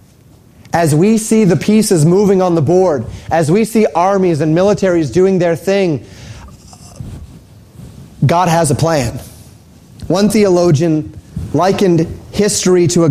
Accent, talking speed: American, 130 wpm